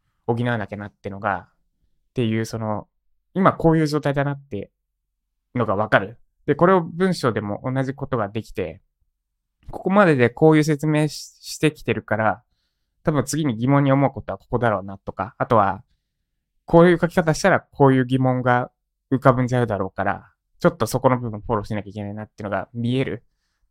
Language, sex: Japanese, male